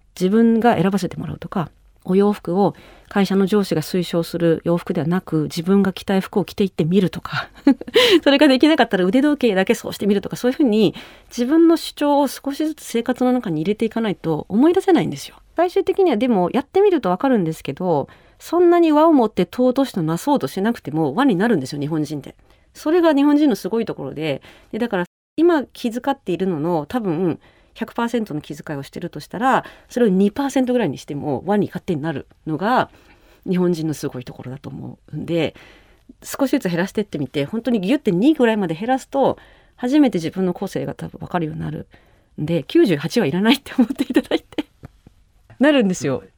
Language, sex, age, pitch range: Japanese, female, 40-59, 165-255 Hz